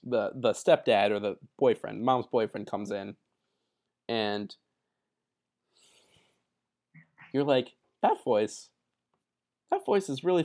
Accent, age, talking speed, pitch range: American, 20-39, 110 wpm, 105-160 Hz